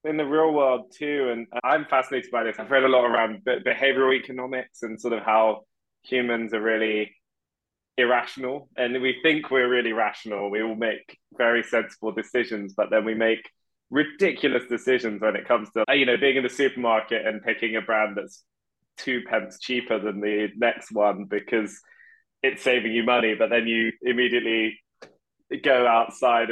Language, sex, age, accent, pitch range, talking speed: English, male, 20-39, British, 110-130 Hz, 170 wpm